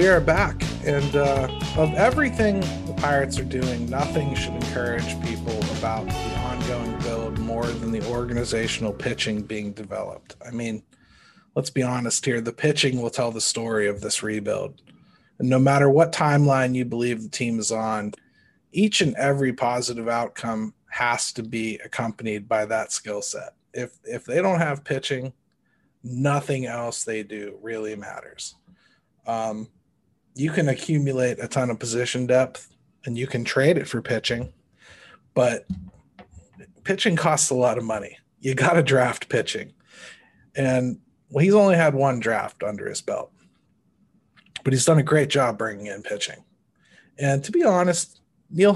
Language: English